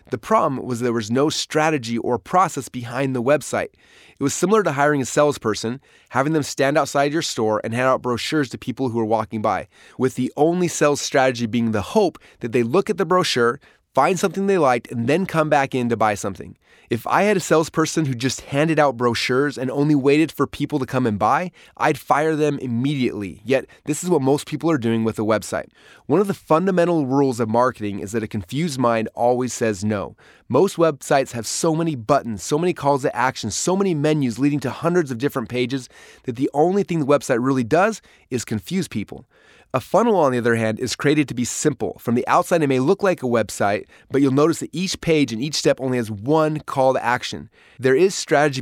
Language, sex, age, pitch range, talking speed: English, male, 20-39, 120-155 Hz, 220 wpm